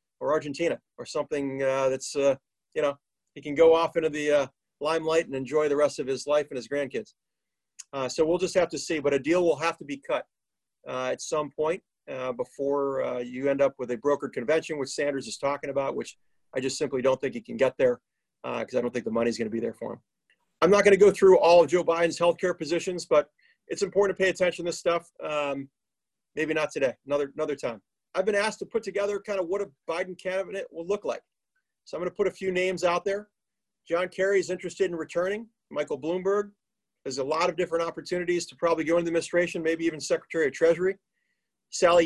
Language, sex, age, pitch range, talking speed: English, male, 40-59, 145-180 Hz, 235 wpm